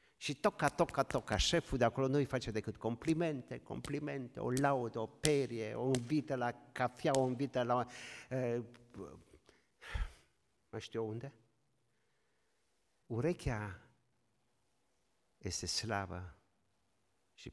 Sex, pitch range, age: male, 95-140 Hz, 50-69